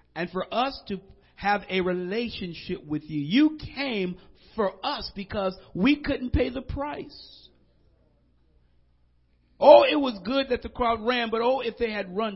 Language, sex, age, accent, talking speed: English, male, 50-69, American, 160 wpm